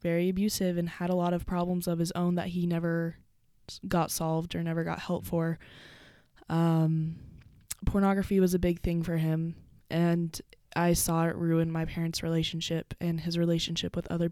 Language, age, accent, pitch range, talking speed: English, 10-29, American, 165-180 Hz, 175 wpm